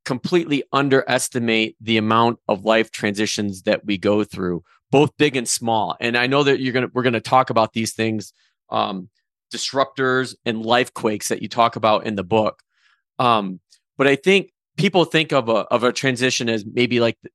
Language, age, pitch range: English, 30-49, 110-140 Hz